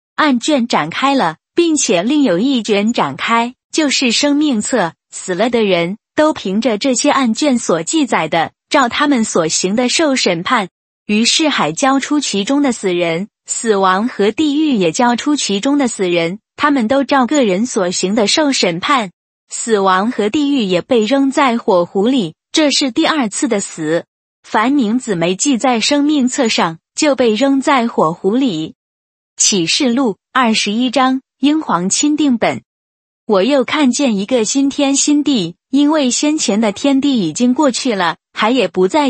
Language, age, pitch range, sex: Chinese, 20-39, 200-280 Hz, female